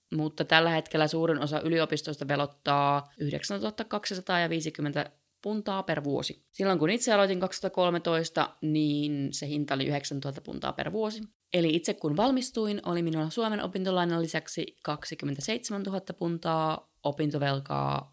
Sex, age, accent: female, 20-39, native